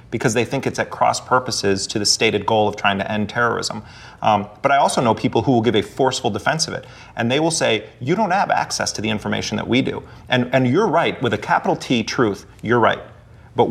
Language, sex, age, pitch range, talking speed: English, male, 30-49, 105-125 Hz, 240 wpm